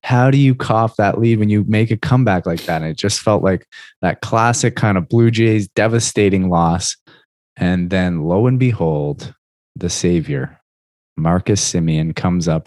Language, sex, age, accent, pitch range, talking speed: English, male, 20-39, American, 85-115 Hz, 175 wpm